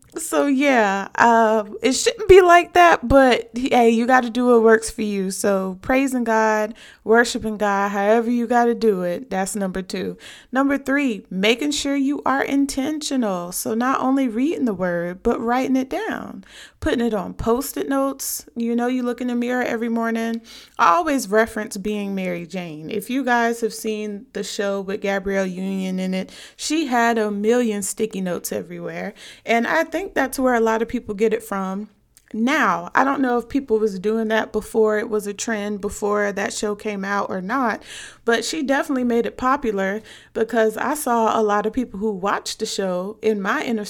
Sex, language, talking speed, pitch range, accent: female, English, 195 wpm, 205-255 Hz, American